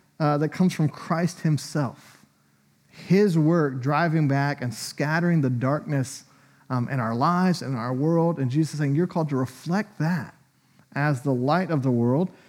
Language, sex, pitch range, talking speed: English, male, 135-185 Hz, 175 wpm